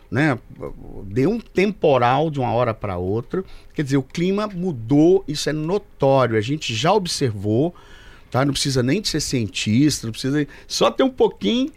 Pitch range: 115-155 Hz